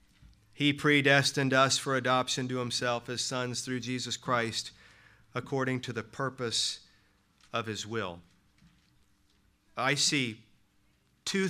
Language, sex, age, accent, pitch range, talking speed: English, male, 40-59, American, 120-150 Hz, 115 wpm